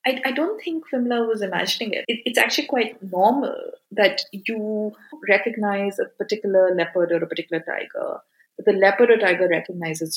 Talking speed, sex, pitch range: 170 wpm, female, 180-225 Hz